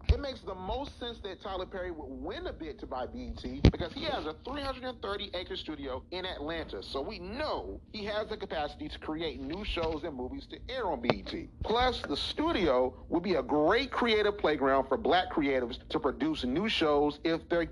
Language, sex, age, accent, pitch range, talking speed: English, male, 40-59, American, 165-215 Hz, 195 wpm